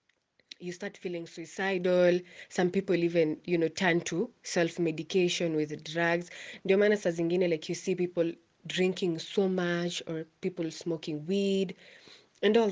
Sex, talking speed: female, 130 wpm